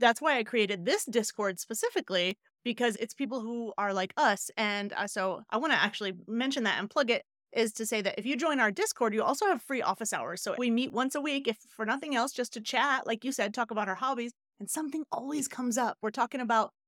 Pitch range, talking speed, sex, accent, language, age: 210-260 Hz, 245 wpm, female, American, English, 30-49